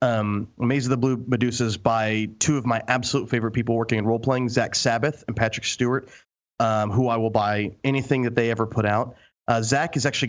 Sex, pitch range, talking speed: male, 115-135 Hz, 215 wpm